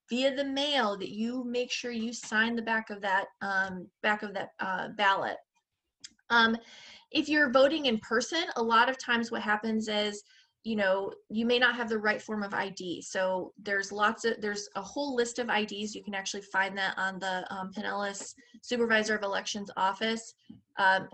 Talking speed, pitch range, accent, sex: 190 wpm, 200-245 Hz, American, female